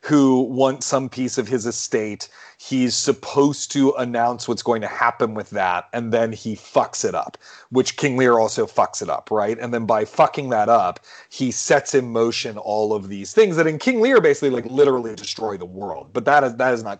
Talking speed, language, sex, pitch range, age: 215 wpm, English, male, 115-145 Hz, 30-49